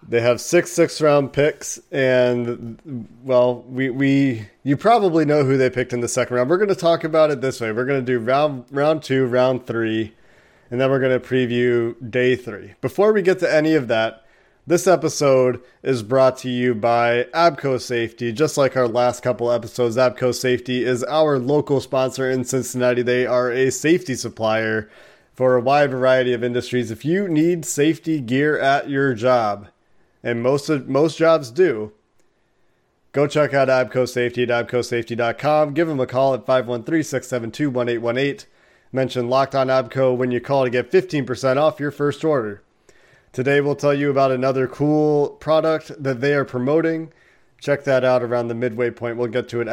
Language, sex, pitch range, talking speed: English, male, 120-145 Hz, 180 wpm